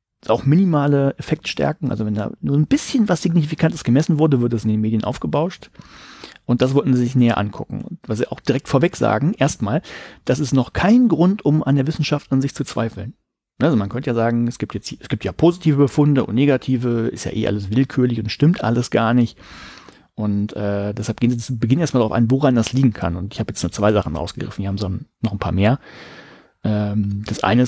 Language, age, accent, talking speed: German, 40-59, German, 225 wpm